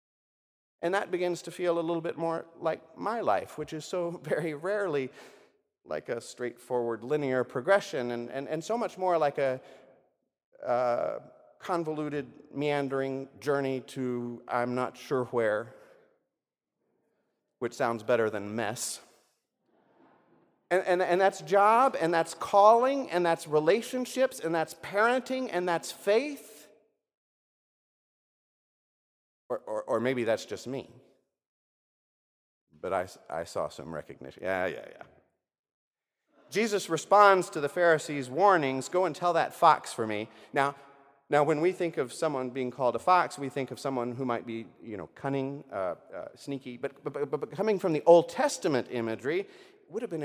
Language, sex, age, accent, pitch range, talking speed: English, male, 40-59, American, 130-195 Hz, 150 wpm